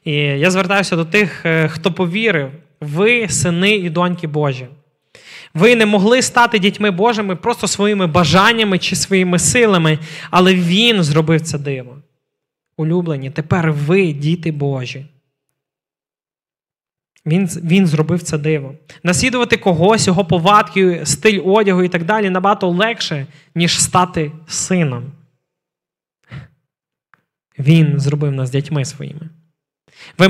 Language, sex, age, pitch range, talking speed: Ukrainian, male, 20-39, 155-200 Hz, 115 wpm